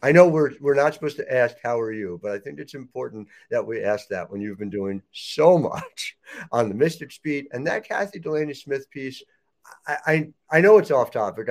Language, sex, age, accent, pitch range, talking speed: English, male, 50-69, American, 110-155 Hz, 220 wpm